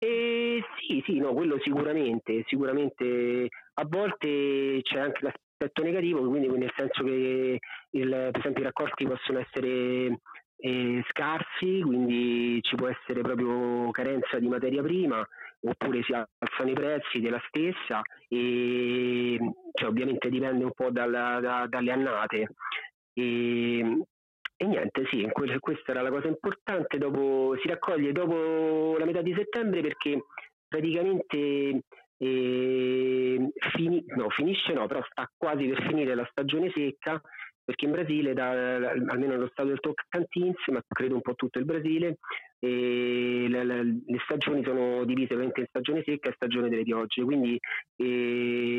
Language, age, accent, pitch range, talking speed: Italian, 30-49, native, 125-150 Hz, 145 wpm